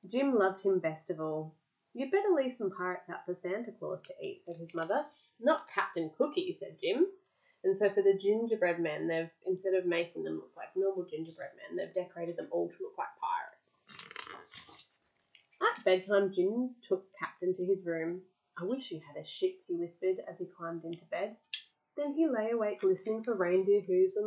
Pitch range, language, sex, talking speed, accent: 180-295 Hz, English, female, 195 wpm, Australian